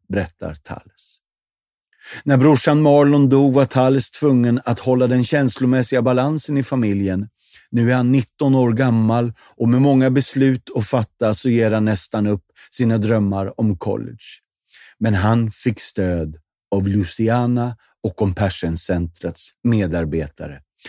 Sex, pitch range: male, 100-130 Hz